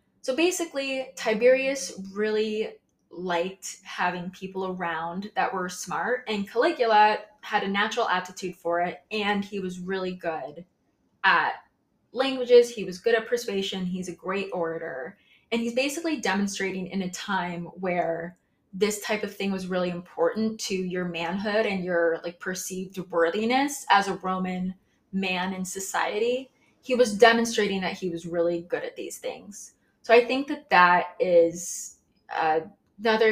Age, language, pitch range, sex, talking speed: 20-39, English, 180-230 Hz, female, 150 wpm